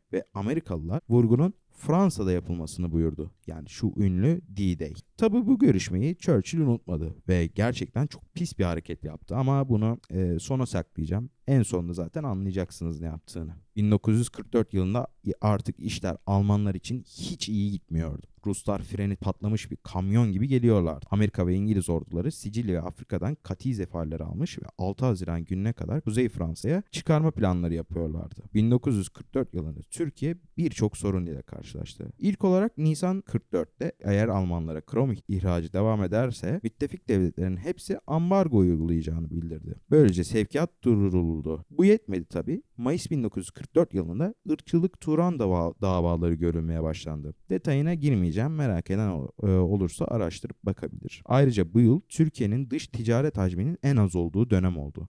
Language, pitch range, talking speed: Turkish, 90-150 Hz, 135 wpm